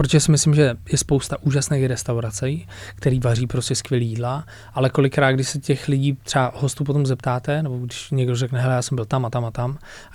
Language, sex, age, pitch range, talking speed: Czech, male, 20-39, 115-130 Hz, 220 wpm